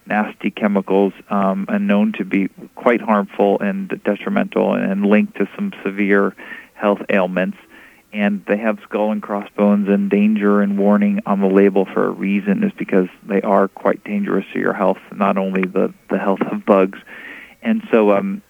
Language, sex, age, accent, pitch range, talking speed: English, male, 40-59, American, 100-115 Hz, 170 wpm